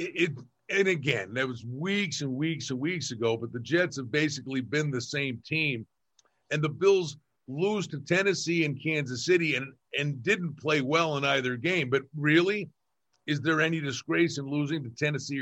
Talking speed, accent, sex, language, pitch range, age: 185 wpm, American, male, English, 140-175 Hz, 50-69